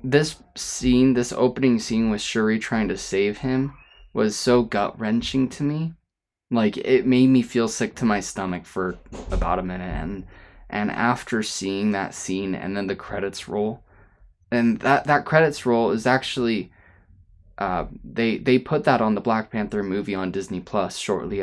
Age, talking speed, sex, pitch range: 20-39, 170 wpm, male, 95-125 Hz